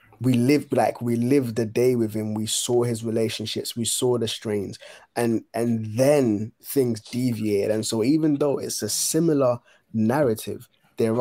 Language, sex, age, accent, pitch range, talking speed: English, male, 20-39, British, 110-125 Hz, 165 wpm